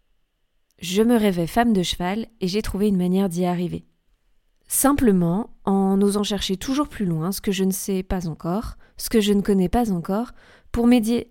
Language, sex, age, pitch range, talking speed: French, female, 20-39, 170-220 Hz, 190 wpm